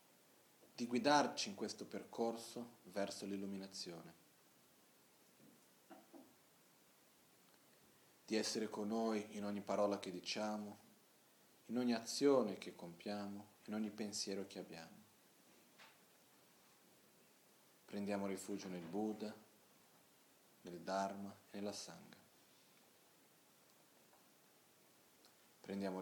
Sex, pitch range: male, 95-110 Hz